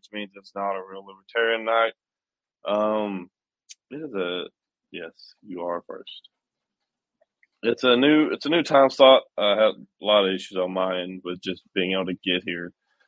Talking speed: 180 wpm